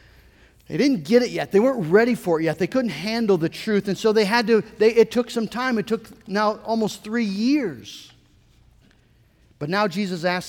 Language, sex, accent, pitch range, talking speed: English, male, American, 170-230 Hz, 205 wpm